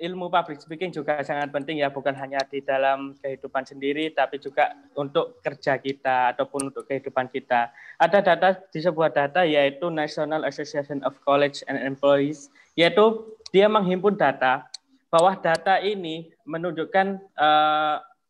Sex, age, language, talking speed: male, 20-39, Indonesian, 140 wpm